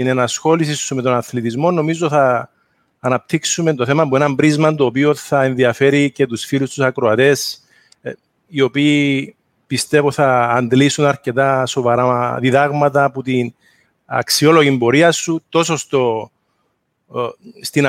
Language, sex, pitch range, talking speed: English, male, 130-155 Hz, 130 wpm